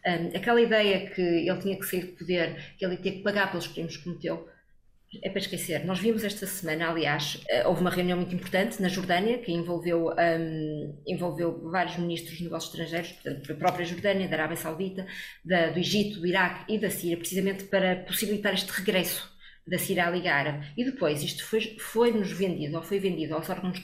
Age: 20-39